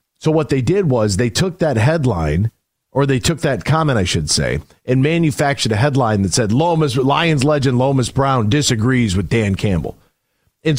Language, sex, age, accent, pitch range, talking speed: English, male, 40-59, American, 130-180 Hz, 185 wpm